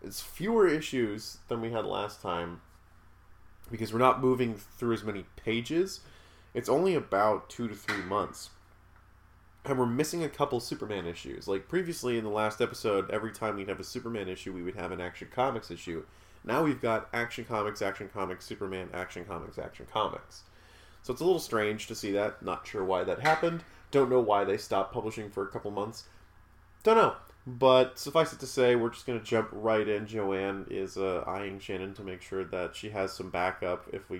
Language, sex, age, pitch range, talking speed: English, male, 30-49, 95-120 Hz, 200 wpm